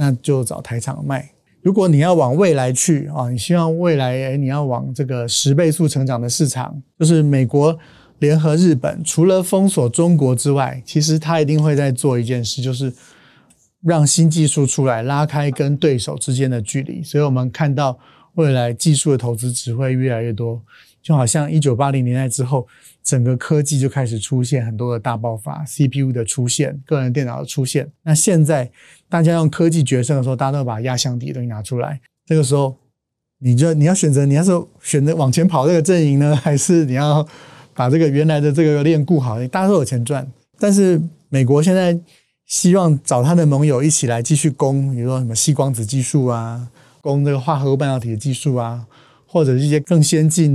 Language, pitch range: Chinese, 125-155 Hz